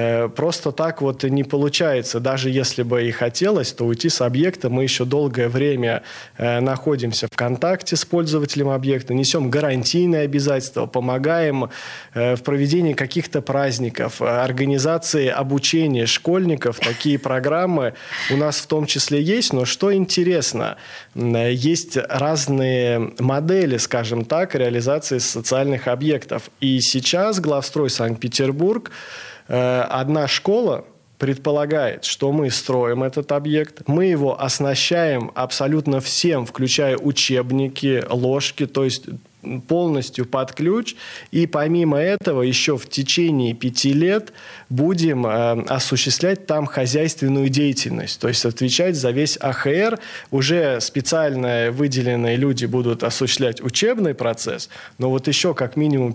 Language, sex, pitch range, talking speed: Russian, male, 125-150 Hz, 120 wpm